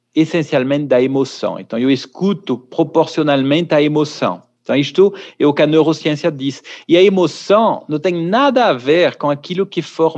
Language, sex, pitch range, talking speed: Portuguese, male, 145-200 Hz, 170 wpm